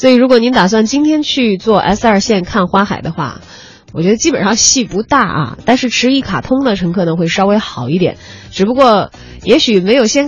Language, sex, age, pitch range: Chinese, female, 20-39, 175-260 Hz